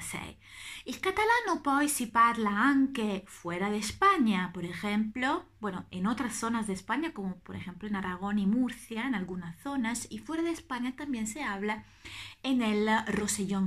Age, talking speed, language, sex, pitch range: 30-49, 165 wpm, Italian, female, 185-280 Hz